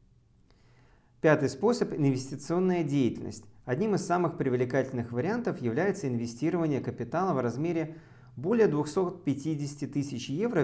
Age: 40-59